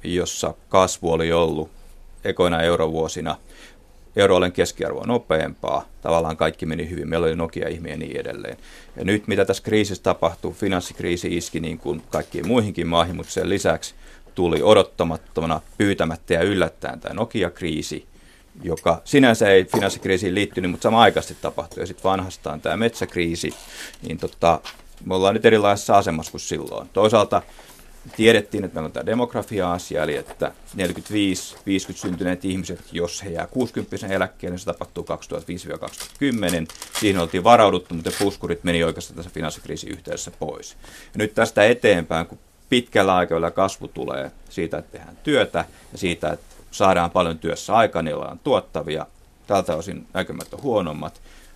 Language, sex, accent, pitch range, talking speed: Finnish, male, native, 85-100 Hz, 145 wpm